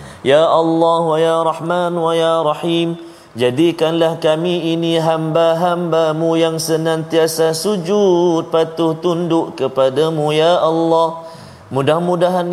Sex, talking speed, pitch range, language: male, 130 wpm, 120-165 Hz, Malayalam